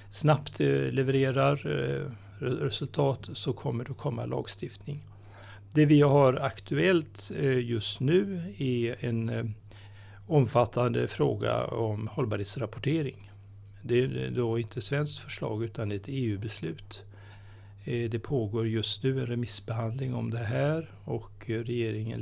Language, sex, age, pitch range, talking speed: Swedish, male, 60-79, 100-130 Hz, 110 wpm